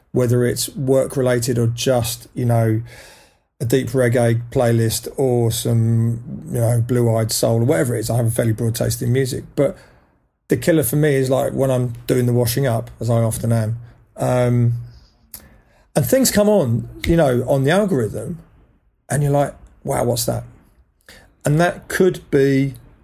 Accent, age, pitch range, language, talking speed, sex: British, 40-59, 115-130 Hz, English, 170 wpm, male